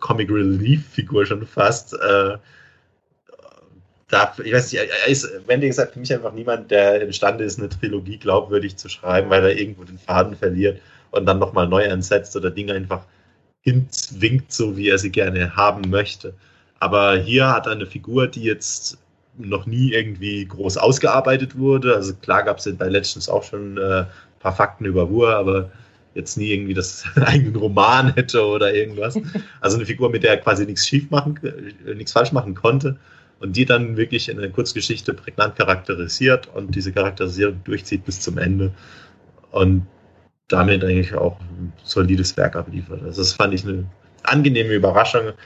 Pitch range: 95-120 Hz